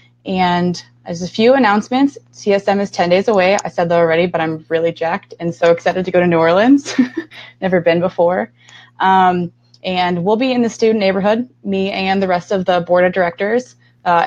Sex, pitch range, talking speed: female, 170-190 Hz, 200 wpm